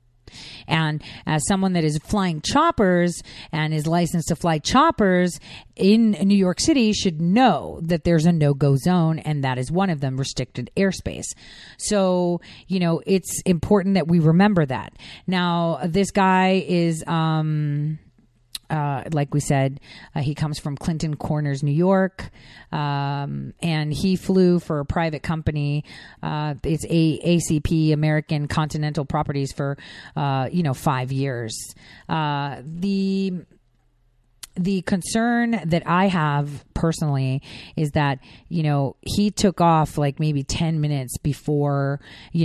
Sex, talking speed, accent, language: female, 140 wpm, American, English